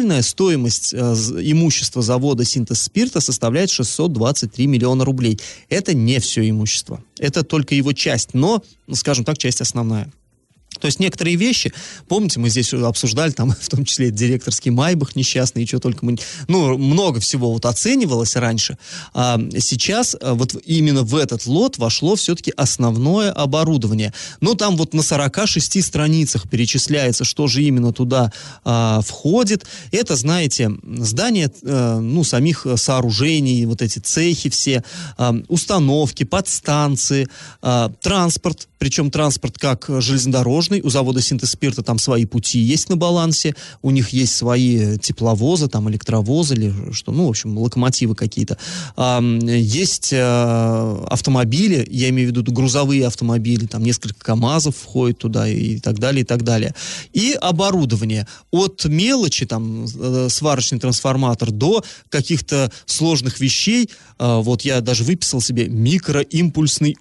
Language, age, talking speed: Russian, 20-39, 130 wpm